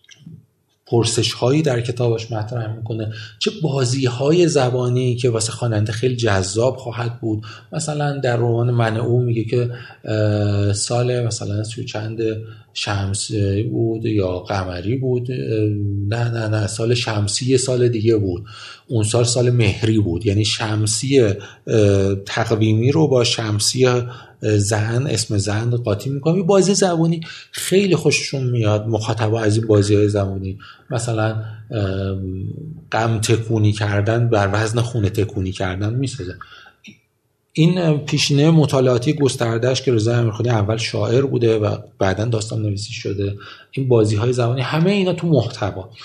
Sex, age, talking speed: male, 30-49, 130 wpm